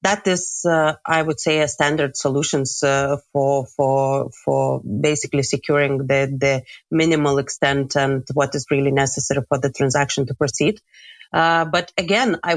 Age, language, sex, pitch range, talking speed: 30-49, English, female, 140-155 Hz, 160 wpm